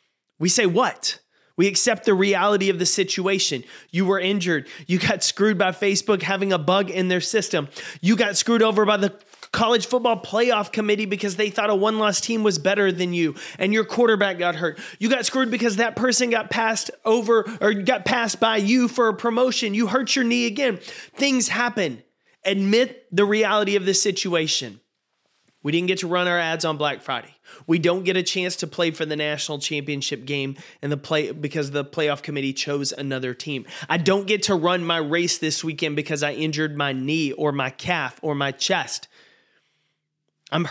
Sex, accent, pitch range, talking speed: male, American, 160-215 Hz, 195 wpm